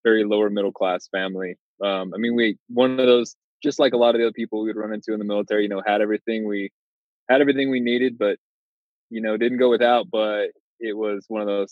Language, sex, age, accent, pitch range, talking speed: English, male, 20-39, American, 100-115 Hz, 245 wpm